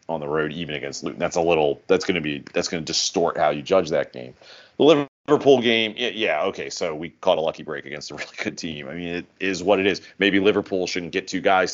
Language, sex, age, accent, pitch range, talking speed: English, male, 30-49, American, 85-115 Hz, 265 wpm